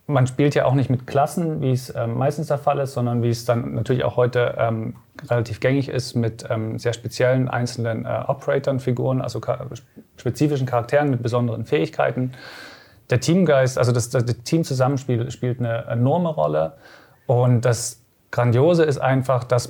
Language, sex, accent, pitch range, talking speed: German, male, German, 120-130 Hz, 170 wpm